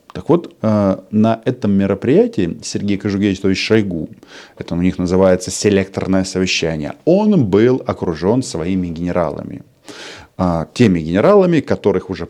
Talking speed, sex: 110 wpm, male